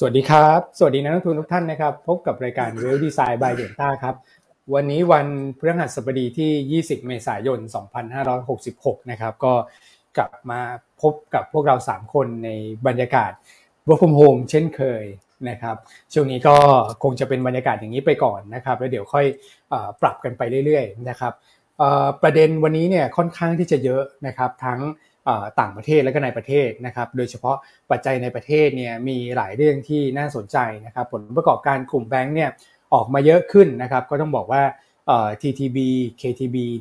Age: 20-39